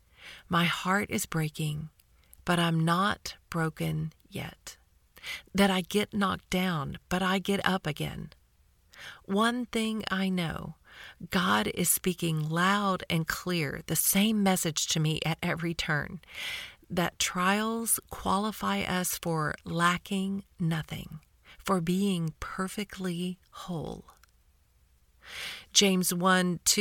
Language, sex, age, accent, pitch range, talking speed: English, female, 40-59, American, 165-200 Hz, 110 wpm